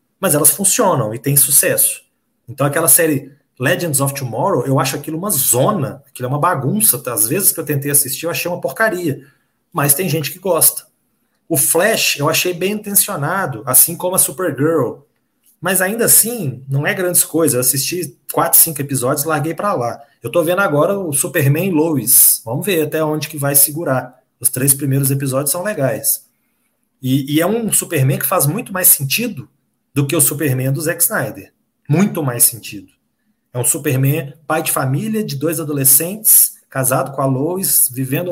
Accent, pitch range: Brazilian, 135-175 Hz